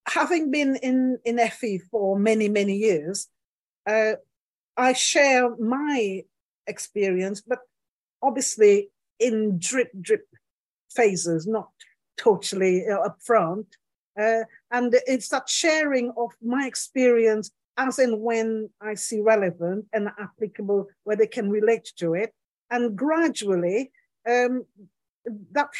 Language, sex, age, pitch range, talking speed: English, female, 50-69, 205-250 Hz, 115 wpm